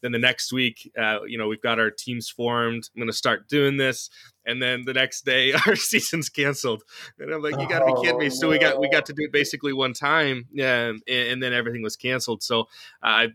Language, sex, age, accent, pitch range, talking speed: English, male, 20-39, American, 105-125 Hz, 245 wpm